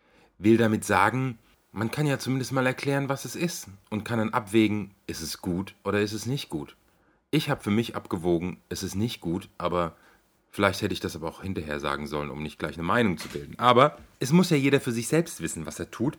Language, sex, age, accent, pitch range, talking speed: German, male, 40-59, German, 90-120 Hz, 230 wpm